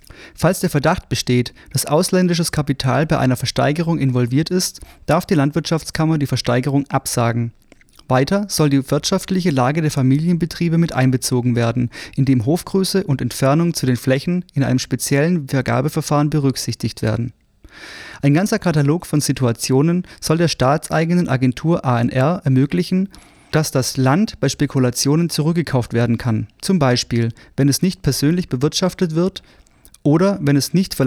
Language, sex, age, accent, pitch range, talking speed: German, male, 30-49, German, 130-170 Hz, 140 wpm